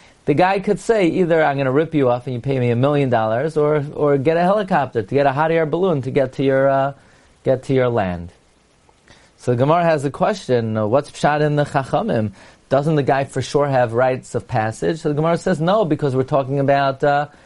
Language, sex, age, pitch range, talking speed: English, male, 30-49, 125-165 Hz, 235 wpm